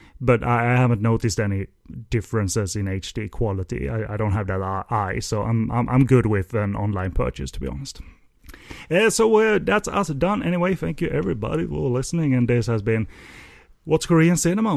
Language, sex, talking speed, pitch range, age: English, male, 185 wpm, 100-145 Hz, 30-49